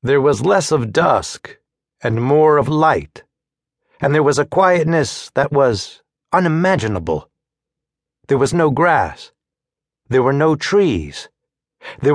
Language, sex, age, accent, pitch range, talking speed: English, male, 60-79, American, 130-170 Hz, 130 wpm